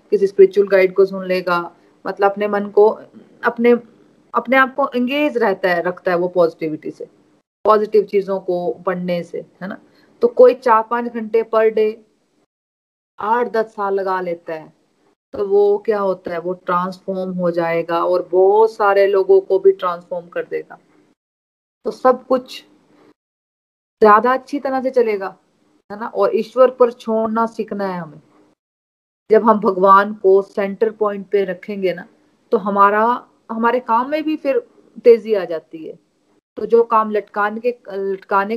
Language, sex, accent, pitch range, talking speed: Hindi, female, native, 185-225 Hz, 160 wpm